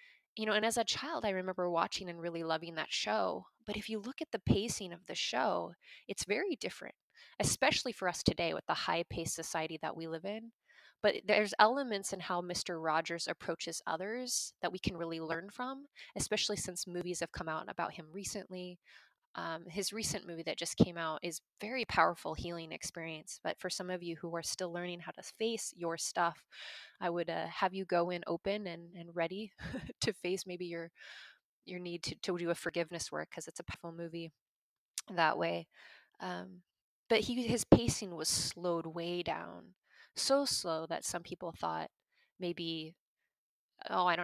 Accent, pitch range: American, 165-195 Hz